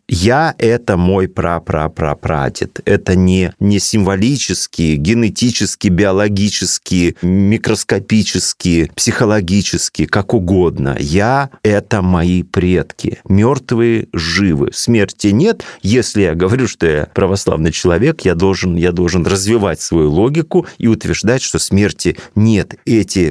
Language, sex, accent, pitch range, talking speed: Russian, male, native, 90-120 Hz, 115 wpm